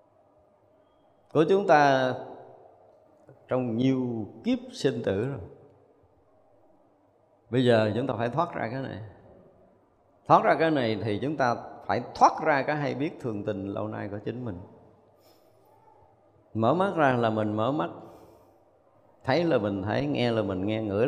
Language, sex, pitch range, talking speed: Vietnamese, male, 105-145 Hz, 155 wpm